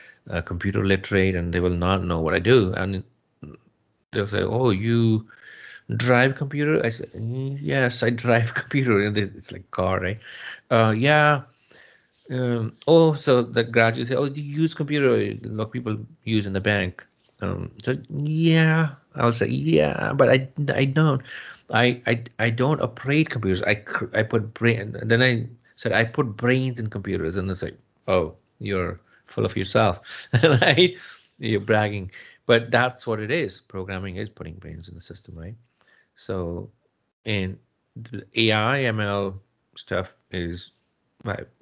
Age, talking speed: 30-49, 160 wpm